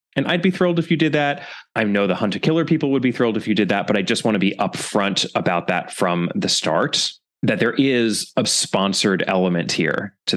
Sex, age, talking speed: male, 20-39, 245 wpm